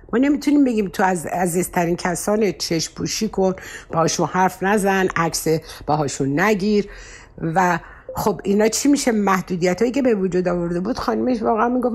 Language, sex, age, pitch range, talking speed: Persian, female, 60-79, 150-205 Hz, 150 wpm